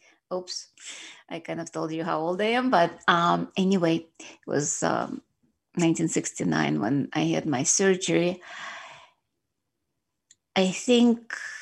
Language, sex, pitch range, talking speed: English, female, 165-215 Hz, 125 wpm